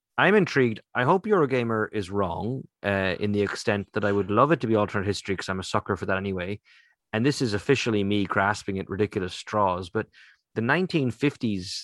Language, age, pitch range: English, 30-49, 95-115 Hz